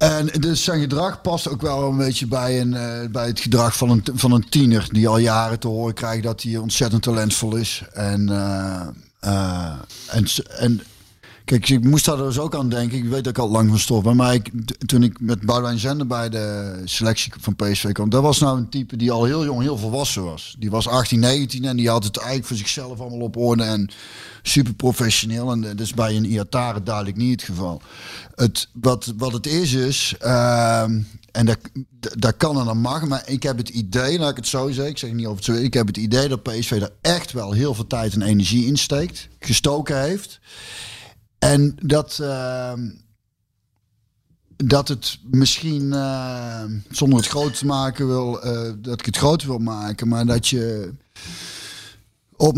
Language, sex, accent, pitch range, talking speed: Dutch, male, Dutch, 110-135 Hz, 200 wpm